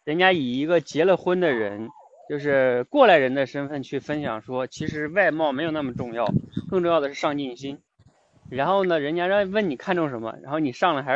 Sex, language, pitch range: male, Chinese, 130-195 Hz